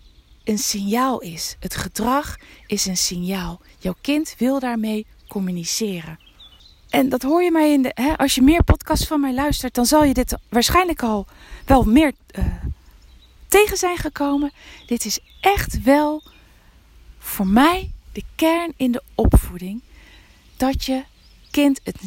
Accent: Dutch